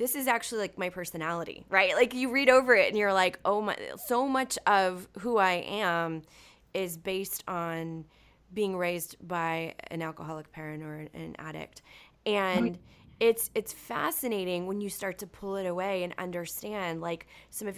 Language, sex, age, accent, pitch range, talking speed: English, female, 20-39, American, 165-195 Hz, 170 wpm